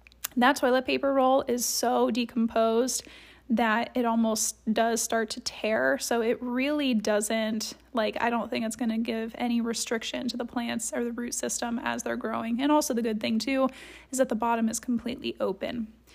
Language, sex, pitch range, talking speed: English, female, 230-285 Hz, 190 wpm